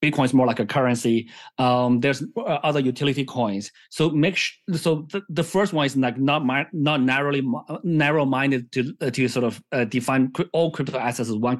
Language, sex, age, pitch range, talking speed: English, male, 30-49, 125-150 Hz, 215 wpm